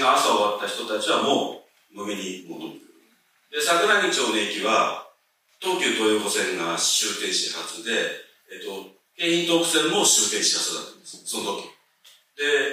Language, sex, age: Japanese, male, 40-59